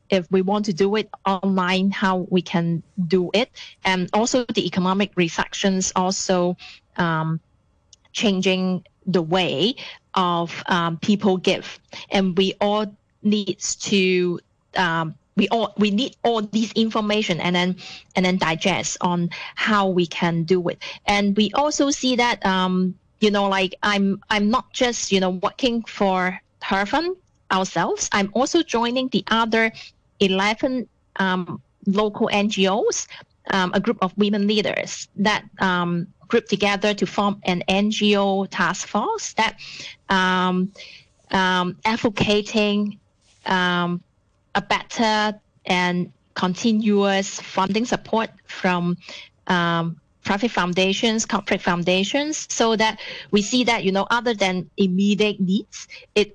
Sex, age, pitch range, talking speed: female, 30-49, 185-215 Hz, 130 wpm